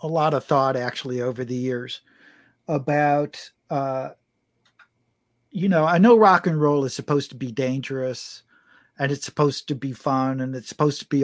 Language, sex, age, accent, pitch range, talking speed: English, male, 50-69, American, 130-165 Hz, 175 wpm